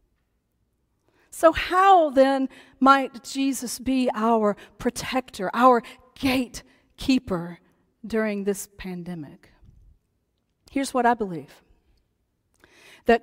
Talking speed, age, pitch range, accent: 80 wpm, 40-59, 220-315 Hz, American